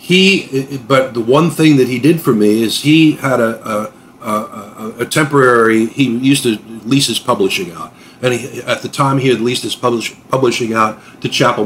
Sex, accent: male, American